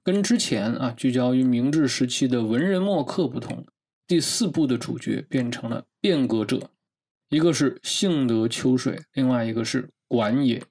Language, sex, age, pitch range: Chinese, male, 20-39, 120-165 Hz